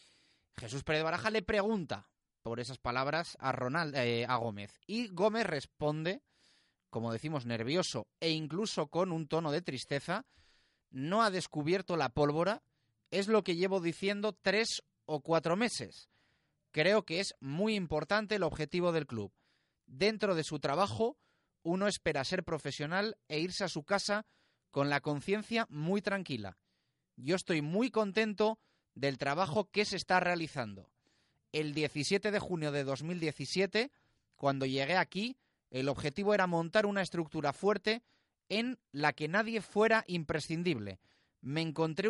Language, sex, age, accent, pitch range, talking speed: Spanish, male, 30-49, Spanish, 145-205 Hz, 145 wpm